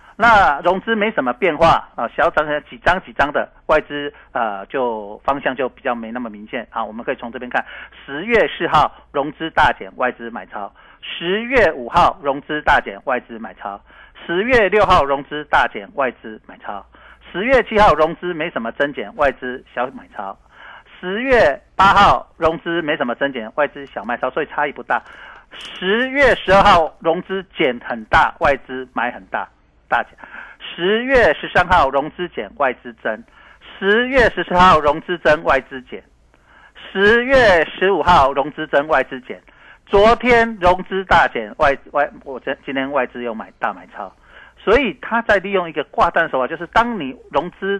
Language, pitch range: Chinese, 140-205 Hz